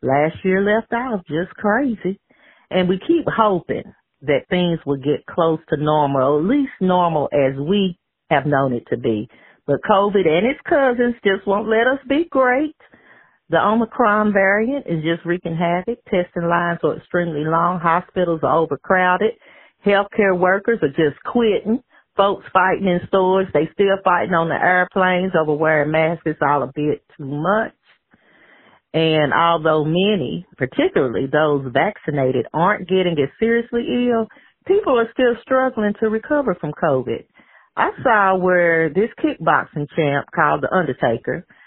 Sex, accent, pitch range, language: female, American, 160-220 Hz, English